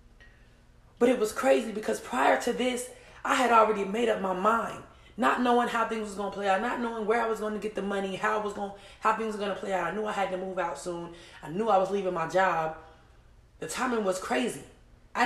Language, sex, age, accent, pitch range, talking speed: English, female, 20-39, American, 175-230 Hz, 255 wpm